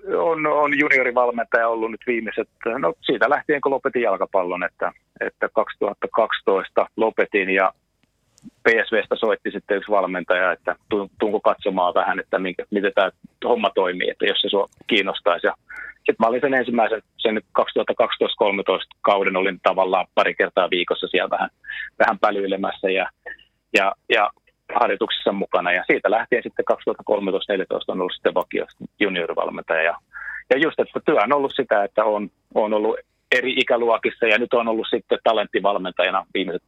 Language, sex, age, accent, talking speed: Finnish, male, 30-49, native, 145 wpm